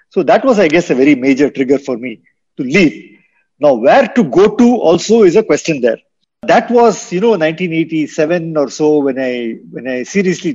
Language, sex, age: Hindi, male, 50-69